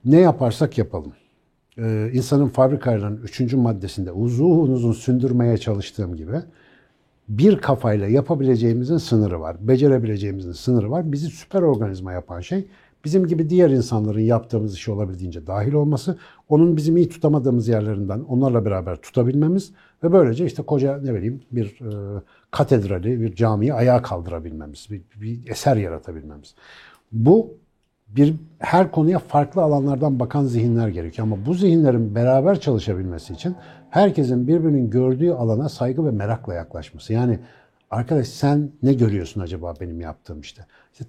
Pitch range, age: 105-150 Hz, 60-79